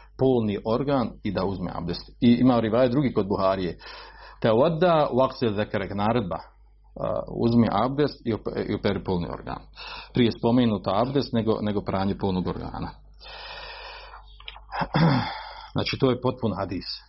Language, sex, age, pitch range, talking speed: Croatian, male, 40-59, 105-135 Hz, 135 wpm